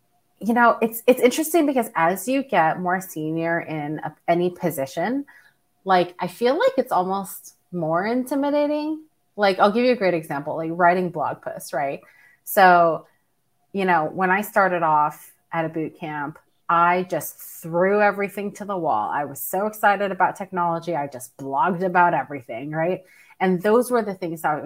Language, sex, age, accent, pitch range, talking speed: English, female, 30-49, American, 165-215 Hz, 175 wpm